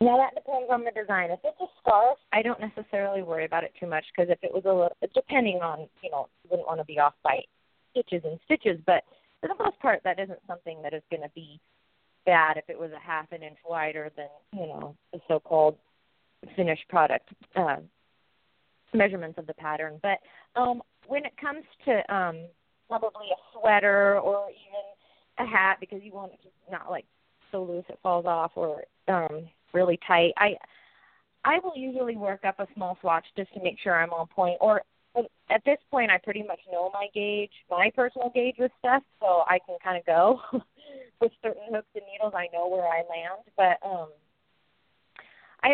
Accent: American